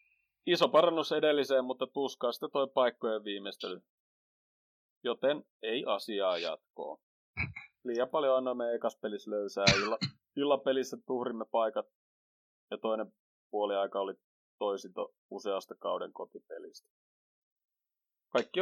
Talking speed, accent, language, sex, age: 105 wpm, native, Finnish, male, 30-49